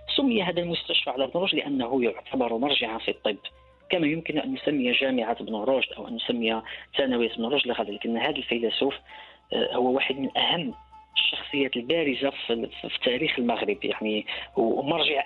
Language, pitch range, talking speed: Arabic, 120-185 Hz, 155 wpm